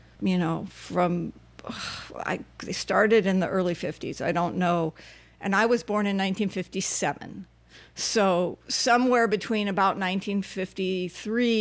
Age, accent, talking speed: 50-69, American, 120 wpm